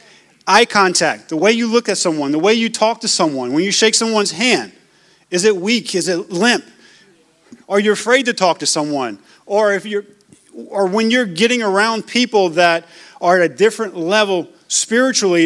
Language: English